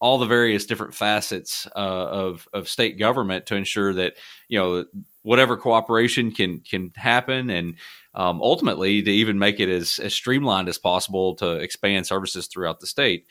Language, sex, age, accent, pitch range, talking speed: English, male, 30-49, American, 90-110 Hz, 170 wpm